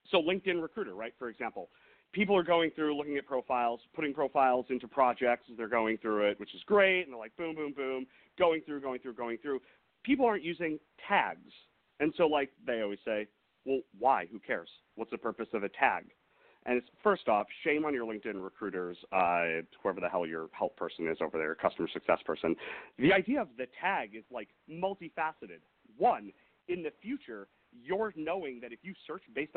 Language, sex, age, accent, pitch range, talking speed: English, male, 40-59, American, 125-195 Hz, 200 wpm